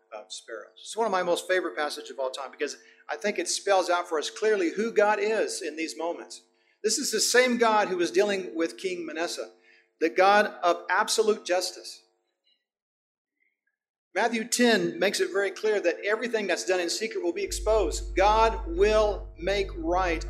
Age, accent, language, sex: 40-59, American, English, male